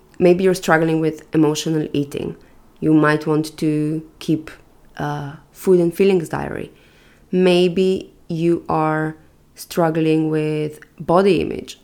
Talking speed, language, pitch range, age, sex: 115 wpm, English, 150-175 Hz, 20-39, female